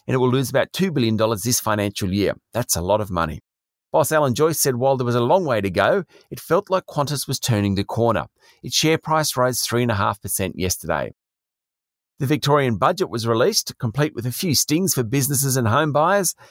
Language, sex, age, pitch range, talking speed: English, male, 40-59, 110-150 Hz, 205 wpm